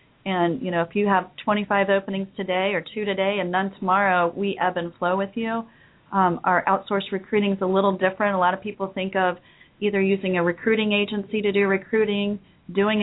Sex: female